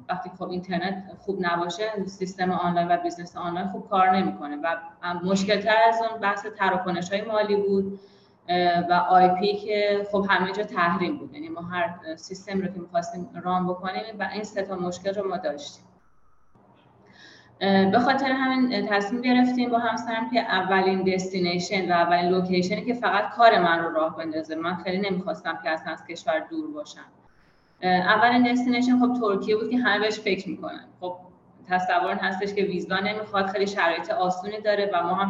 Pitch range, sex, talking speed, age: 180-220 Hz, female, 165 wpm, 30-49